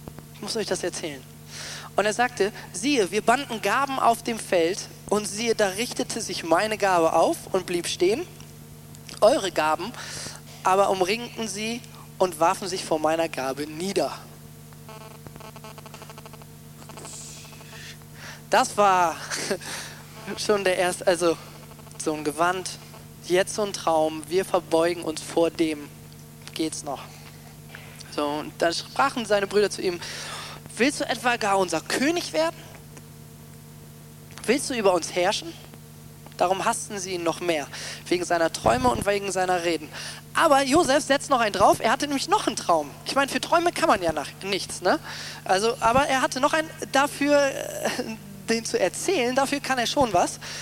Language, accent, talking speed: German, German, 150 wpm